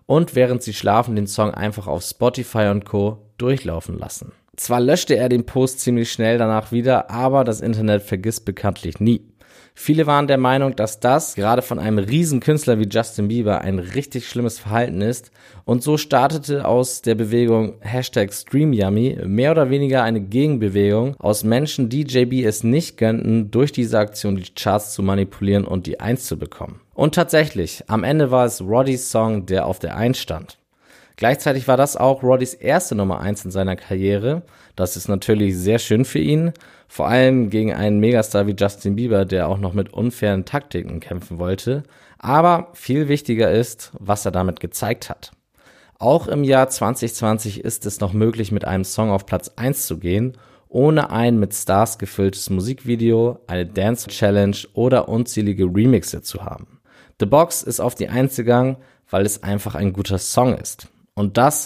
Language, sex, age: German, male, 20-39